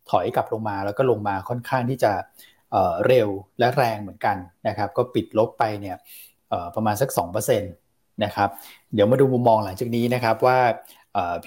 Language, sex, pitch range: Thai, male, 105-130 Hz